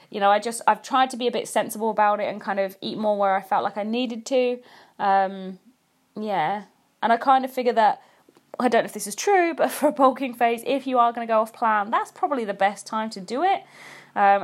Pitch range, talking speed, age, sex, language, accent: 210-270 Hz, 260 wpm, 20-39, female, English, British